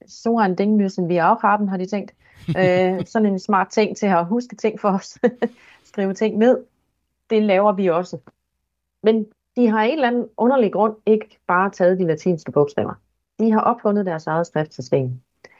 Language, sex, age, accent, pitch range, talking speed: Danish, female, 30-49, native, 145-200 Hz, 175 wpm